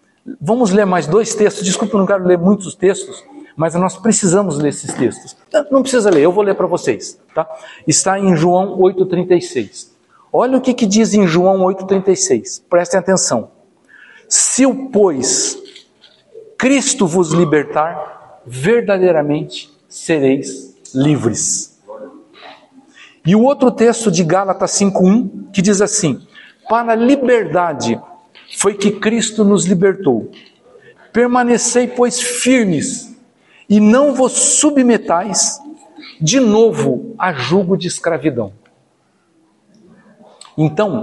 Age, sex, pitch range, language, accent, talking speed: 60-79, male, 175-240 Hz, Portuguese, Brazilian, 120 wpm